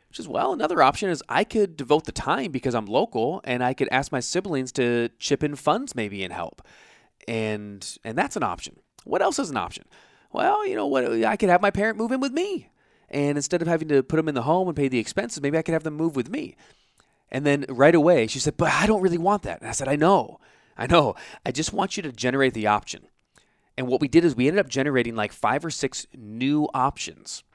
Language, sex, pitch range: English, male, 110-160 Hz